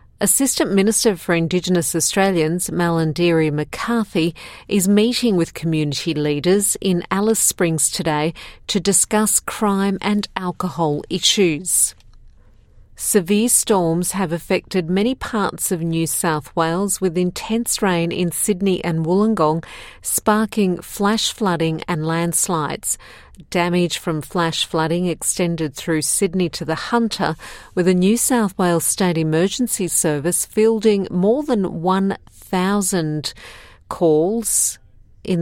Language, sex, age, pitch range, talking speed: English, female, 50-69, 160-195 Hz, 115 wpm